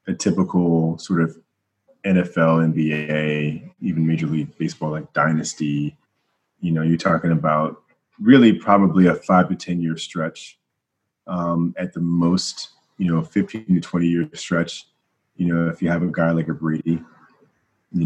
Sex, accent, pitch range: male, American, 80-95 Hz